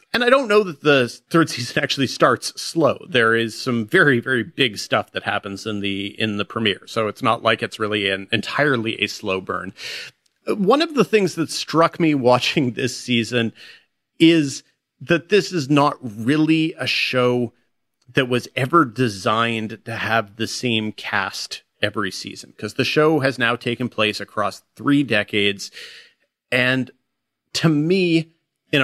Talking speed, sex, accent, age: 160 wpm, male, American, 30-49